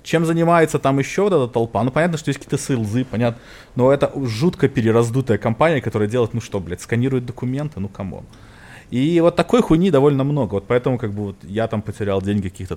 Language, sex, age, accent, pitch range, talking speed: Russian, male, 20-39, native, 100-145 Hz, 210 wpm